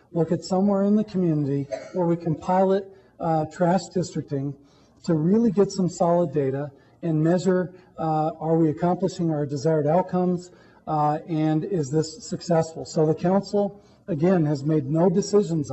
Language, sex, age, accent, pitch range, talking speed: English, male, 50-69, American, 150-175 Hz, 155 wpm